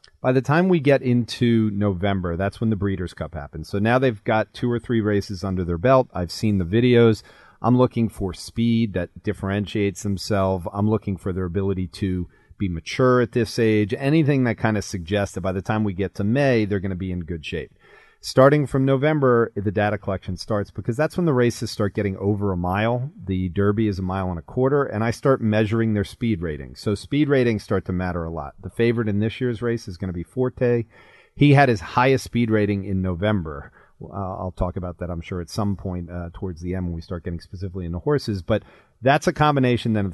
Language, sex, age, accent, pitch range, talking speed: English, male, 40-59, American, 95-120 Hz, 225 wpm